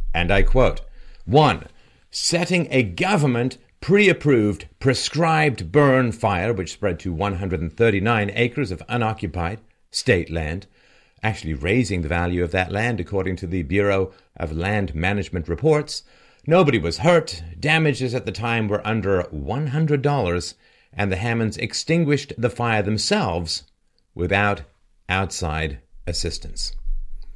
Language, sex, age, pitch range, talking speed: English, male, 50-69, 95-135 Hz, 120 wpm